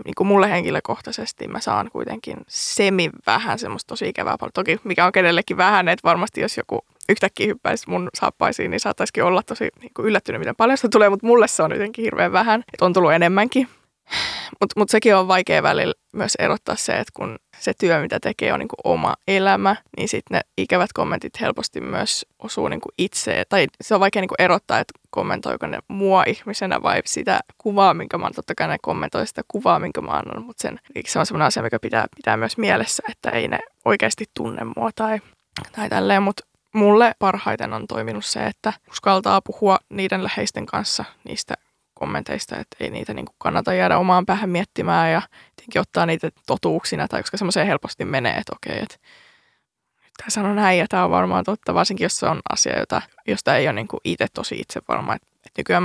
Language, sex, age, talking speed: Finnish, female, 20-39, 185 wpm